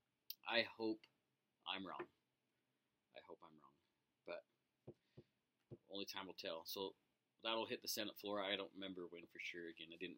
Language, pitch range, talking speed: English, 100-120 Hz, 165 wpm